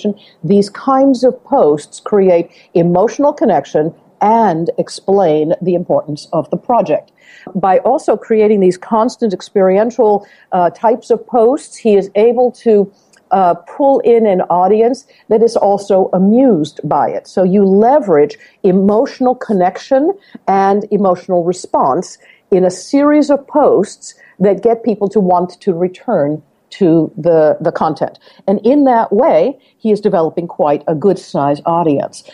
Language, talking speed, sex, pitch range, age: English, 135 wpm, female, 170-230 Hz, 50-69